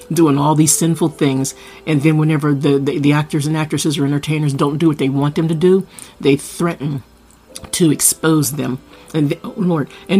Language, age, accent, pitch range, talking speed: English, 50-69, American, 145-180 Hz, 200 wpm